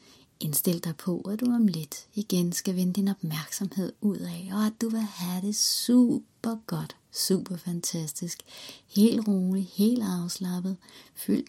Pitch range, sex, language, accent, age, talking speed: 155-200 Hz, female, Danish, native, 30-49, 150 wpm